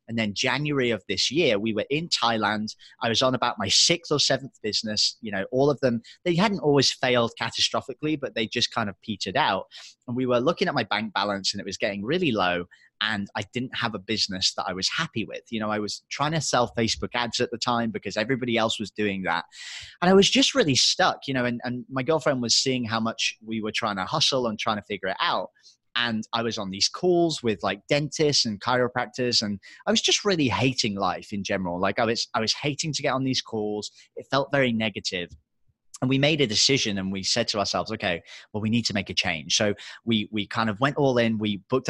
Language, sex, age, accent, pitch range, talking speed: English, male, 20-39, British, 105-130 Hz, 240 wpm